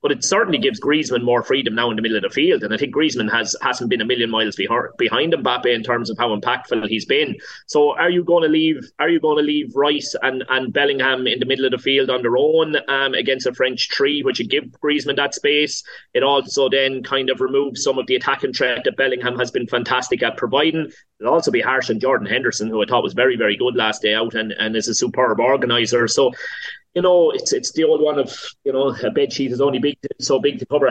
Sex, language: male, English